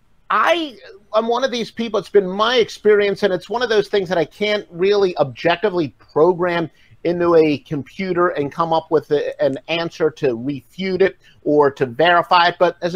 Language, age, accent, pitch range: English, 50-69, American, 155-215 Hz